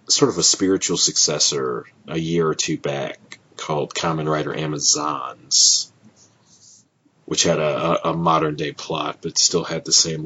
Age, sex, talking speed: 30-49, male, 145 wpm